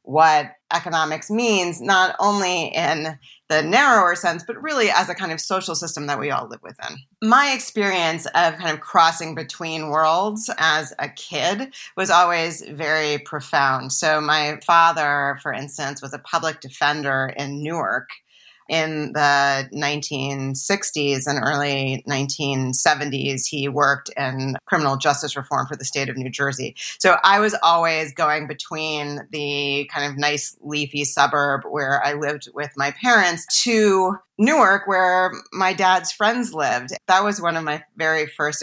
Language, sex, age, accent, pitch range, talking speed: English, female, 40-59, American, 140-170 Hz, 150 wpm